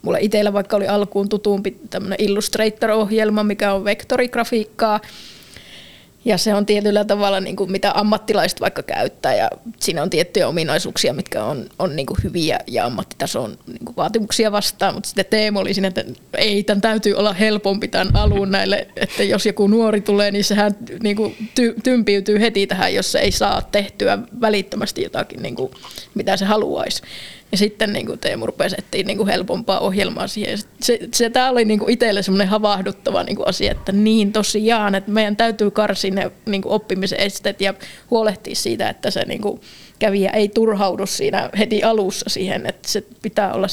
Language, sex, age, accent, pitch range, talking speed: Finnish, female, 20-39, native, 200-220 Hz, 160 wpm